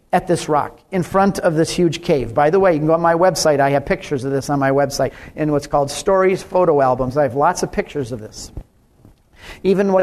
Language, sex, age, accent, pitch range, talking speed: English, male, 40-59, American, 155-215 Hz, 245 wpm